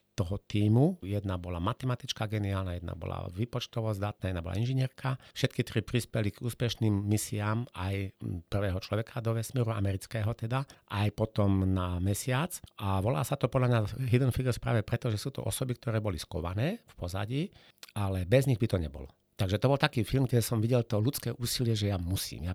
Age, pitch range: 50-69, 100-125 Hz